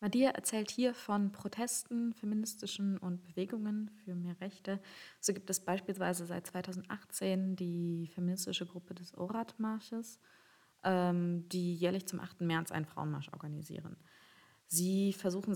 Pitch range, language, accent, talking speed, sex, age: 155-185 Hz, German, German, 125 wpm, female, 20-39